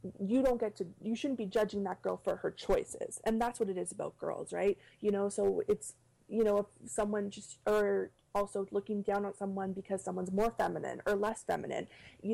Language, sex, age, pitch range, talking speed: English, female, 20-39, 195-225 Hz, 215 wpm